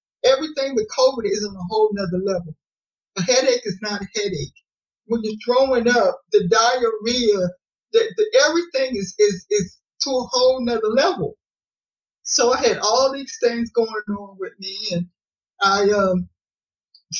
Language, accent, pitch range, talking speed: English, American, 200-240 Hz, 155 wpm